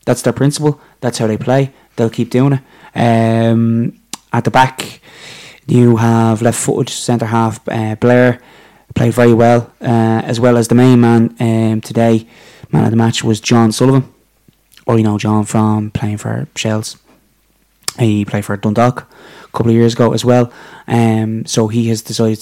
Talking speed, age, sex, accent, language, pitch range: 175 wpm, 20-39, male, Irish, English, 110-125 Hz